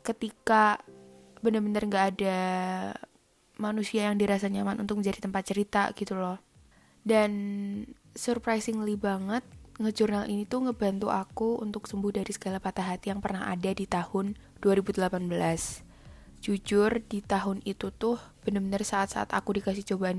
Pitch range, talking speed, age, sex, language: 190-210 Hz, 130 wpm, 10-29, female, Indonesian